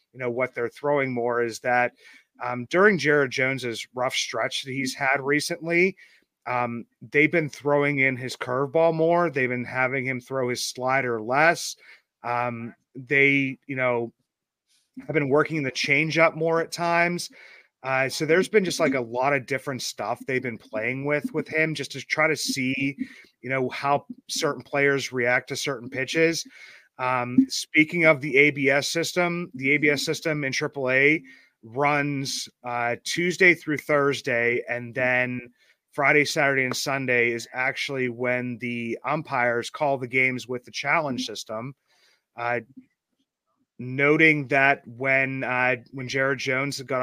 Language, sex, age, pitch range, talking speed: English, male, 30-49, 125-150 Hz, 155 wpm